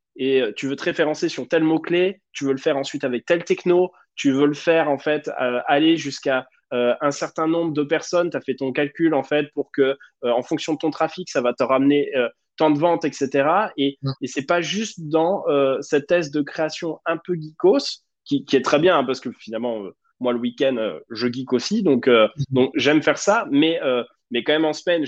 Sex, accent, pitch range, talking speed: male, French, 135-170 Hz, 230 wpm